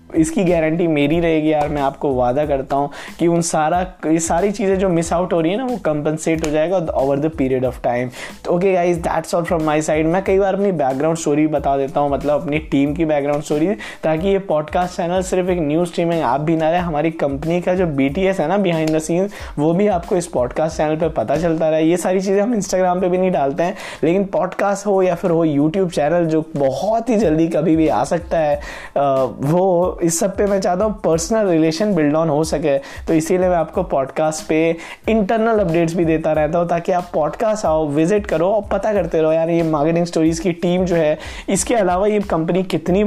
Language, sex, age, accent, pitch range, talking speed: Hindi, male, 20-39, native, 150-185 Hz, 225 wpm